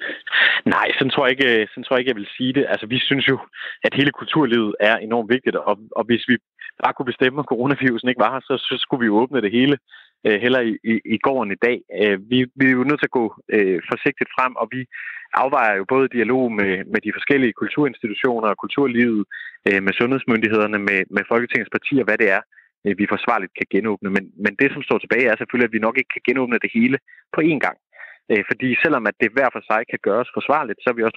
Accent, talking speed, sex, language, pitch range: native, 235 wpm, male, Danish, 105-125 Hz